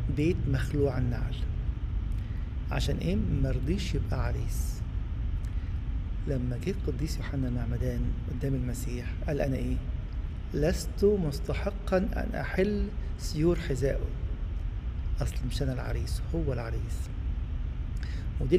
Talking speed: 100 wpm